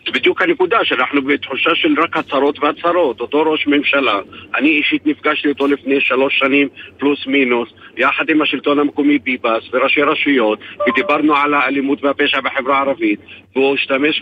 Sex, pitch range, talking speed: male, 135-155 Hz, 150 wpm